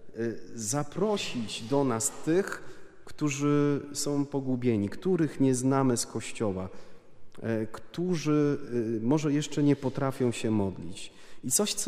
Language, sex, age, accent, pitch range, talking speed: Polish, male, 30-49, native, 105-135 Hz, 110 wpm